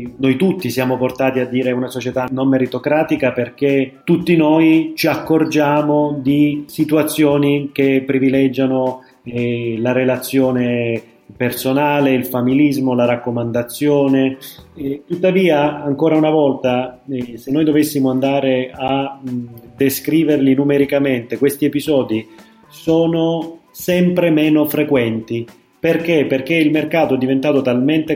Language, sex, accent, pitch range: Italian, male, native, 125-150 Hz